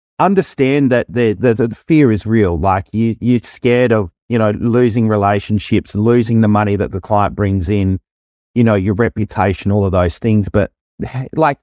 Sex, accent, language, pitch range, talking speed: male, Australian, English, 100-125 Hz, 180 wpm